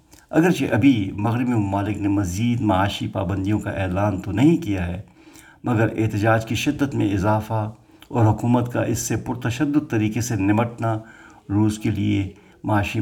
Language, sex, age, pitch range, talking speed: Urdu, male, 50-69, 100-115 Hz, 150 wpm